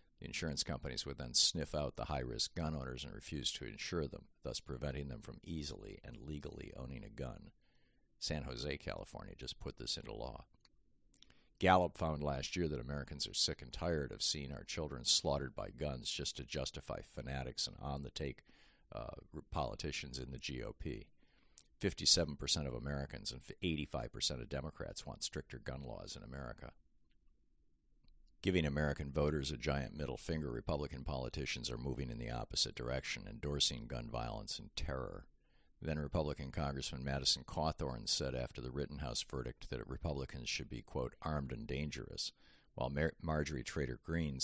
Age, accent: 50-69, American